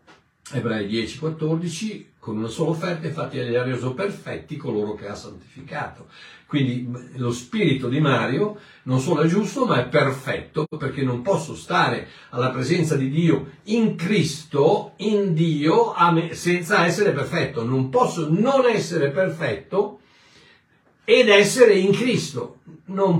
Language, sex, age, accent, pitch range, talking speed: Italian, male, 60-79, native, 130-195 Hz, 135 wpm